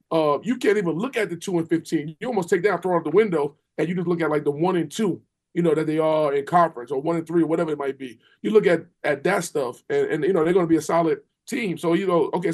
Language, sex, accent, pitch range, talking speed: English, male, American, 155-190 Hz, 315 wpm